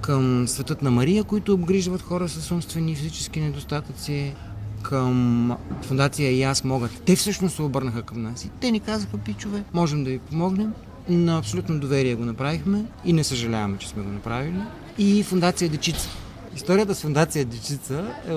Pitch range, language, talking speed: 120-185 Hz, Bulgarian, 165 wpm